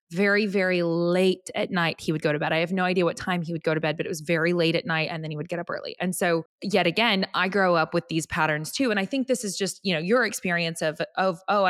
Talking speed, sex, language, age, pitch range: 305 wpm, female, English, 20-39, 170-205 Hz